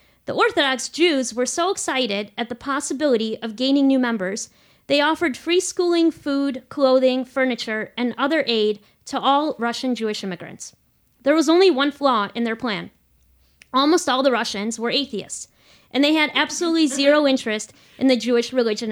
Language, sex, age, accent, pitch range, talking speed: English, female, 30-49, American, 225-285 Hz, 165 wpm